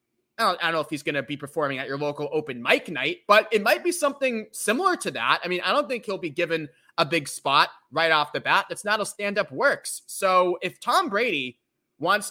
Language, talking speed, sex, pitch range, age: English, 245 wpm, male, 155-210 Hz, 20-39